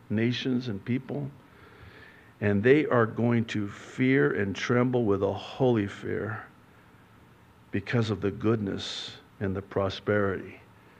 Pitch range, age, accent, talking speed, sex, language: 105-135 Hz, 60-79, American, 120 wpm, male, English